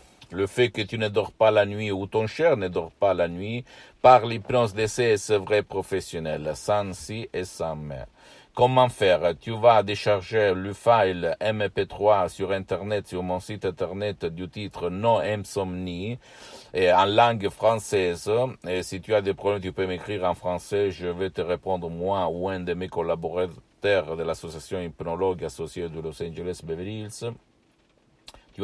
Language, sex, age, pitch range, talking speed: Italian, male, 50-69, 90-110 Hz, 170 wpm